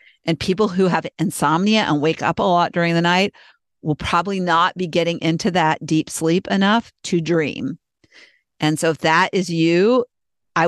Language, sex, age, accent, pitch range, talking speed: English, female, 50-69, American, 165-185 Hz, 180 wpm